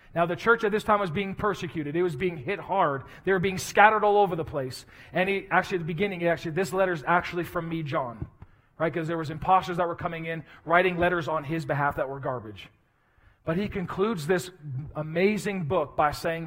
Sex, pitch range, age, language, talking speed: male, 140-180 Hz, 40-59, English, 220 wpm